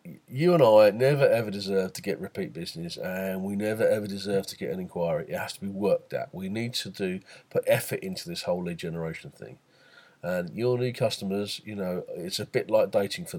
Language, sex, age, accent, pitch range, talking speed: English, male, 40-59, British, 100-150 Hz, 220 wpm